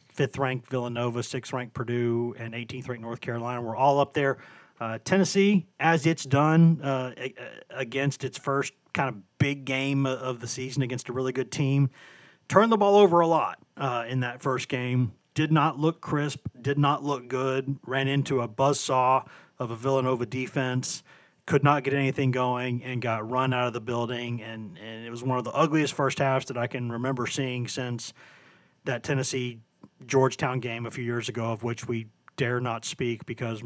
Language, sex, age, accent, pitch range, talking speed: English, male, 40-59, American, 120-140 Hz, 185 wpm